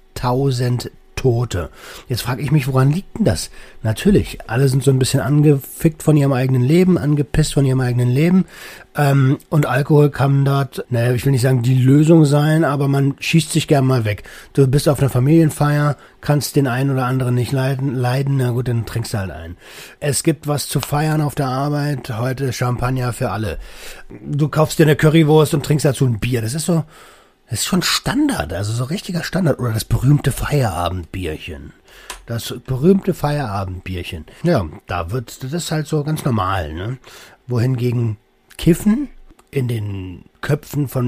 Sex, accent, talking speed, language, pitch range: male, German, 180 wpm, German, 125-150 Hz